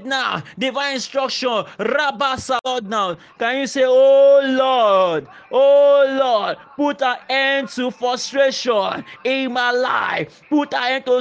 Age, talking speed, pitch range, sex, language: 30-49, 130 wpm, 245-280 Hz, male, English